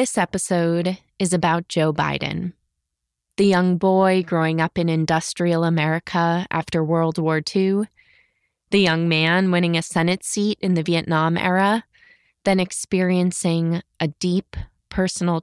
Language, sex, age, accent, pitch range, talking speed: English, female, 20-39, American, 165-205 Hz, 130 wpm